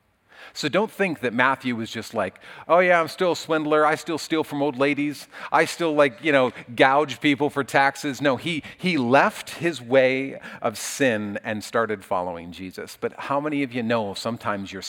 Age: 40-59